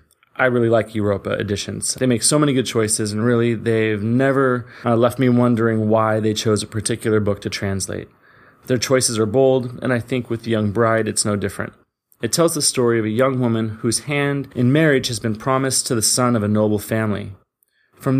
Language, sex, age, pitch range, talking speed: English, male, 30-49, 110-130 Hz, 210 wpm